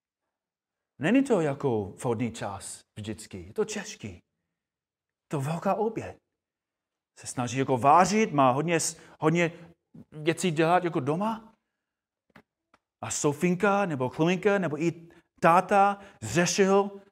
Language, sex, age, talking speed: Czech, male, 30-49, 110 wpm